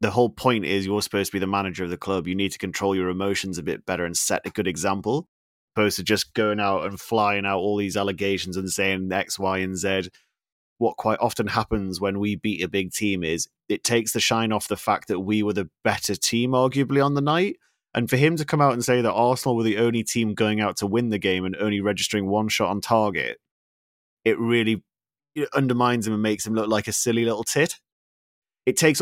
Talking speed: 235 wpm